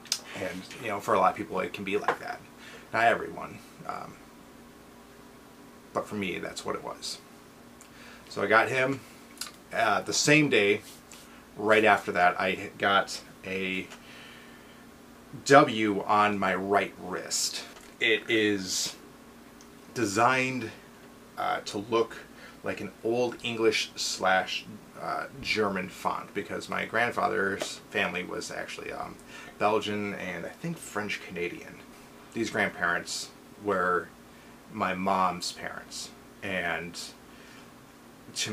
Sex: male